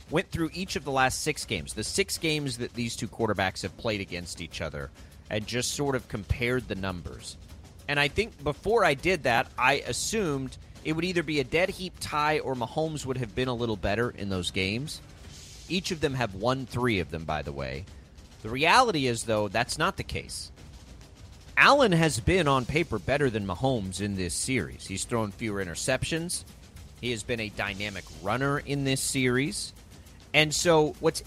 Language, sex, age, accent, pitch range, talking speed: English, male, 30-49, American, 95-145 Hz, 195 wpm